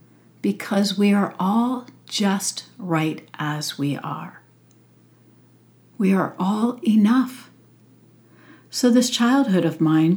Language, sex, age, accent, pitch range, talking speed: English, female, 60-79, American, 160-195 Hz, 105 wpm